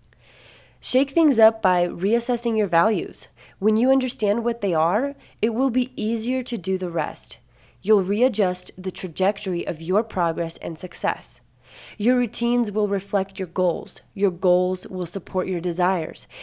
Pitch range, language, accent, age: 170-215 Hz, English, American, 20-39